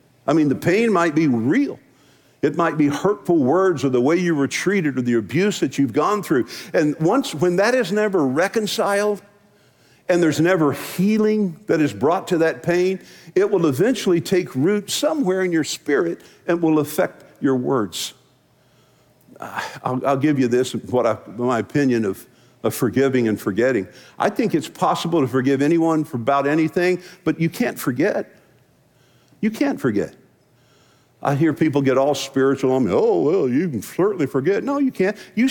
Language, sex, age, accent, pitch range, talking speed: English, male, 50-69, American, 130-200 Hz, 175 wpm